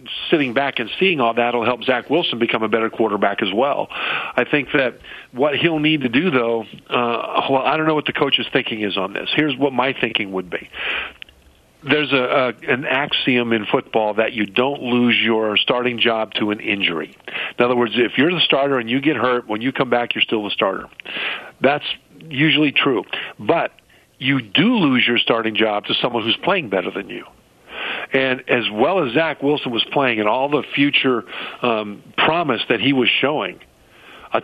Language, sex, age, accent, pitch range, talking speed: English, male, 50-69, American, 115-140 Hz, 200 wpm